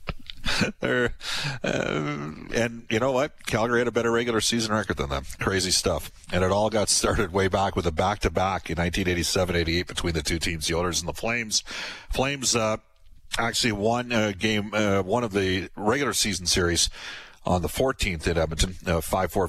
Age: 50-69